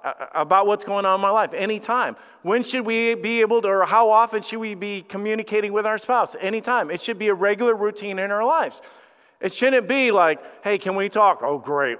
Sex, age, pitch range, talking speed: male, 40-59, 195-255 Hz, 220 wpm